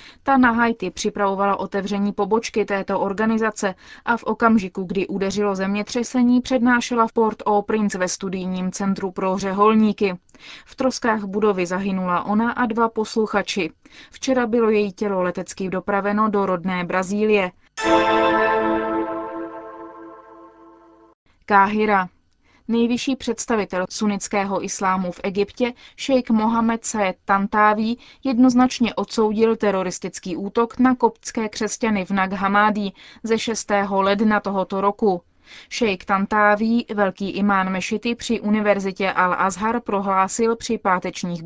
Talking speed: 110 wpm